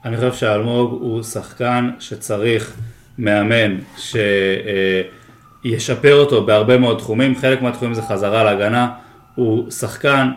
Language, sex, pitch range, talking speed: Hebrew, male, 110-130 Hz, 115 wpm